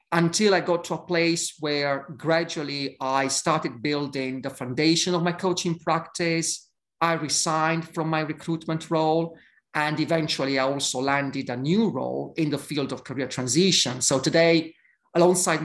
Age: 40-59